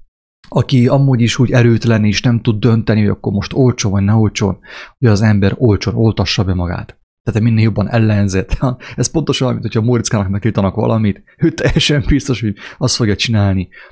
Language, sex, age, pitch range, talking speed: English, male, 30-49, 100-125 Hz, 175 wpm